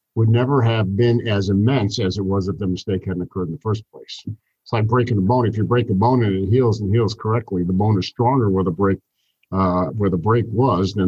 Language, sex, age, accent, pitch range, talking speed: English, male, 50-69, American, 95-115 Hz, 255 wpm